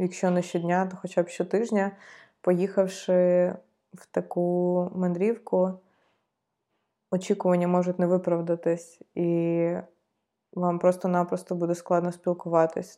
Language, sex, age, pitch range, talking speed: Ukrainian, female, 20-39, 175-190 Hz, 95 wpm